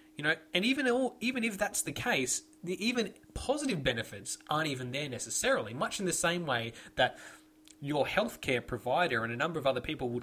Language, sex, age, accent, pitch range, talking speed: English, male, 20-39, Australian, 120-165 Hz, 200 wpm